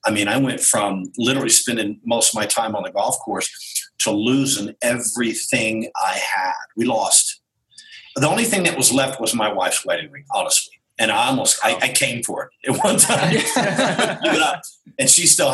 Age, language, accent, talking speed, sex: 50-69, English, American, 185 wpm, male